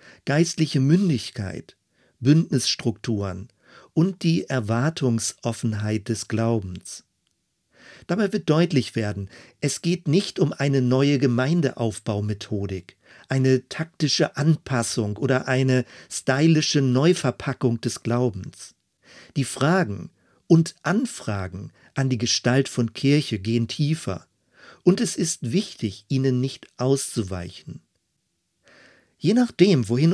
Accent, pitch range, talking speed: German, 115-155 Hz, 100 wpm